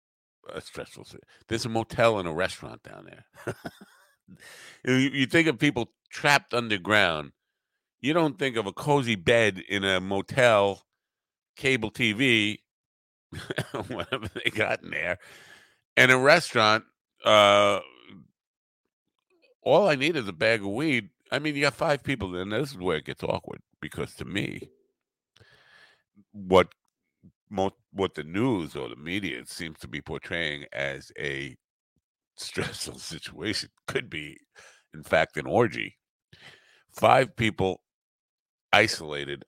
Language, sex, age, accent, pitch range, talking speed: English, male, 50-69, American, 85-130 Hz, 130 wpm